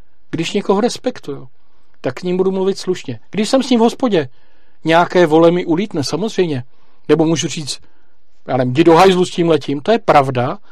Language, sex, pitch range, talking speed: Czech, male, 140-205 Hz, 175 wpm